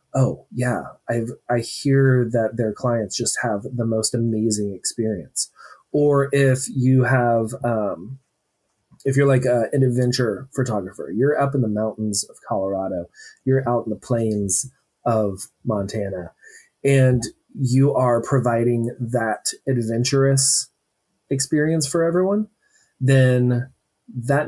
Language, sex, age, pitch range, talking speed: English, male, 20-39, 115-140 Hz, 125 wpm